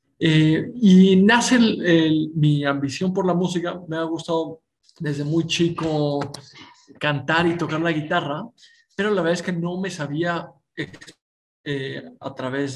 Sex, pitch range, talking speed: male, 140-175 Hz, 145 wpm